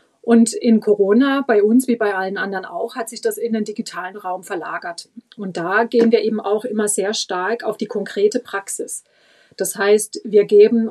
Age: 30-49